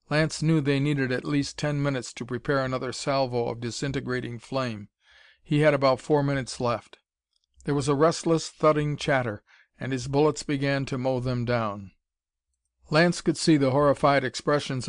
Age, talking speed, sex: 50-69, 165 wpm, male